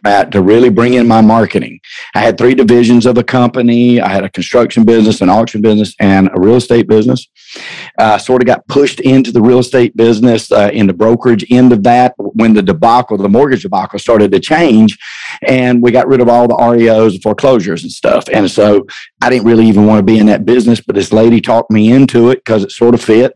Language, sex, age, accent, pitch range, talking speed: English, male, 50-69, American, 105-120 Hz, 225 wpm